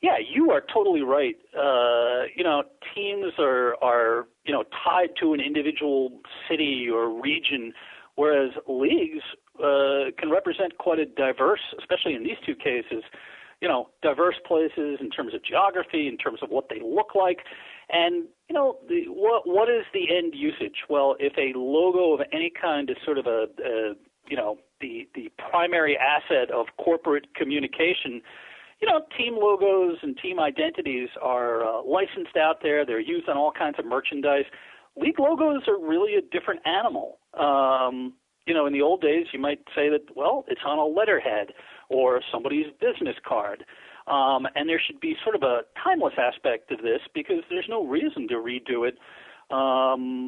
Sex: male